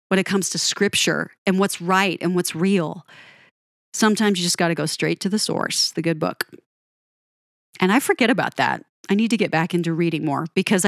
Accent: American